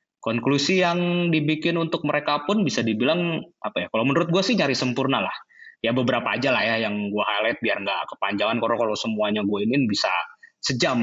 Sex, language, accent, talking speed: male, Indonesian, native, 185 wpm